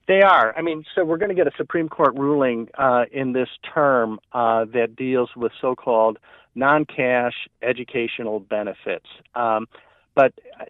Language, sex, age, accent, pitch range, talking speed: English, male, 50-69, American, 120-160 Hz, 150 wpm